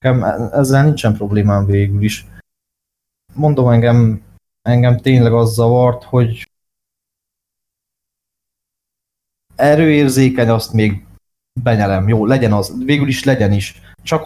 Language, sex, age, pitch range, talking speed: Hungarian, male, 20-39, 95-125 Hz, 100 wpm